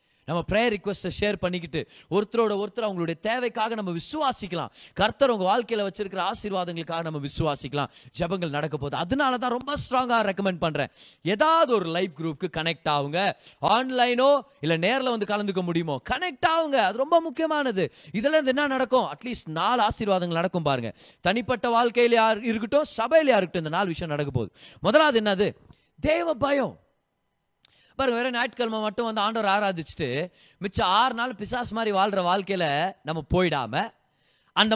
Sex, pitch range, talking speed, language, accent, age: male, 175-260 Hz, 75 wpm, Tamil, native, 30-49